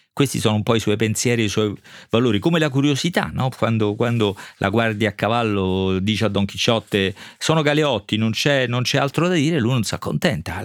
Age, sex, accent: 40-59, male, native